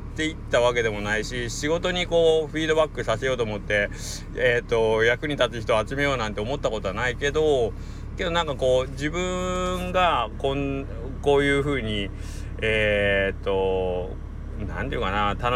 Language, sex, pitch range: Japanese, male, 95-140 Hz